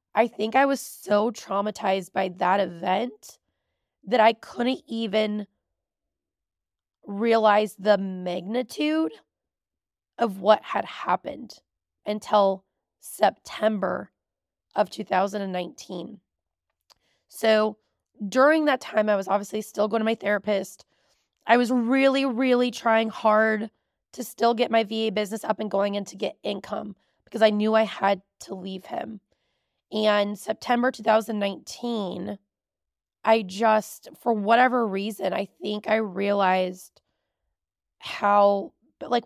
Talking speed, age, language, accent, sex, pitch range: 120 wpm, 20-39, English, American, female, 195-235 Hz